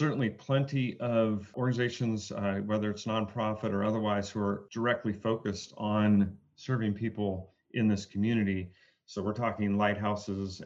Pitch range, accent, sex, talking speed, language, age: 100-110 Hz, American, male, 135 wpm, English, 40-59